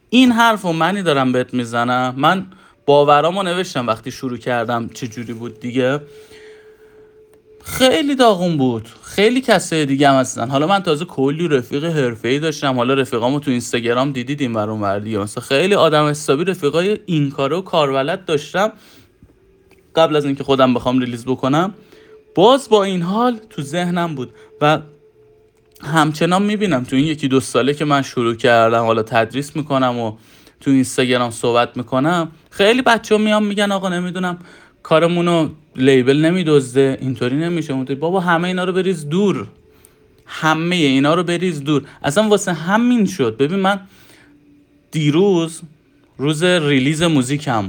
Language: Persian